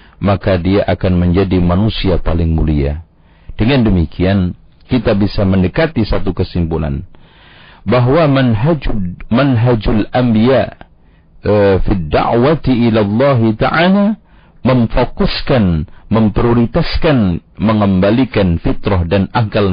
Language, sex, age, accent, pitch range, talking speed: Indonesian, male, 50-69, native, 95-125 Hz, 80 wpm